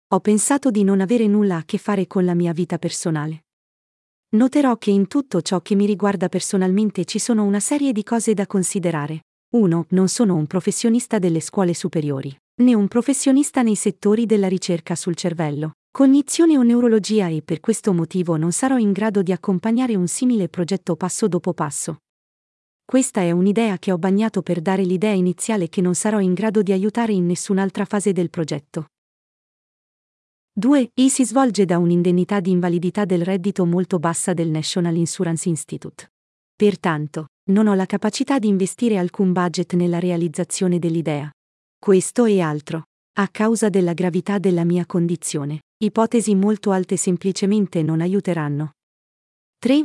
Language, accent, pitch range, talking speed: Italian, native, 175-215 Hz, 160 wpm